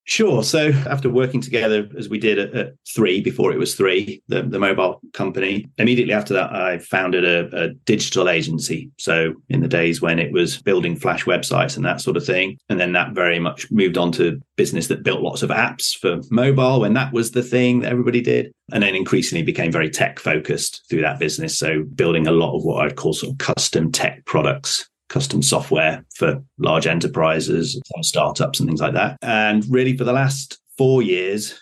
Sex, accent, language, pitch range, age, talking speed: male, British, English, 85-125 Hz, 30-49, 205 wpm